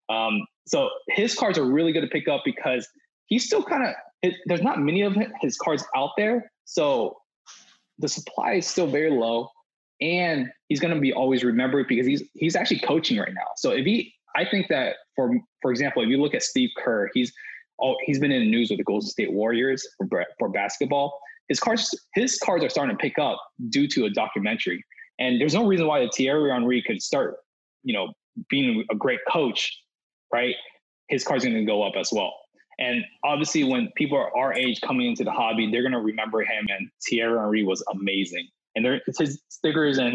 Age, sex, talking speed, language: 20-39, male, 210 wpm, English